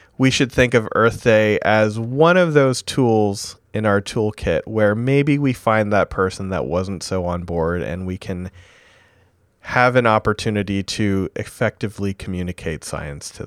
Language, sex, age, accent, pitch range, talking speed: English, male, 30-49, American, 95-140 Hz, 160 wpm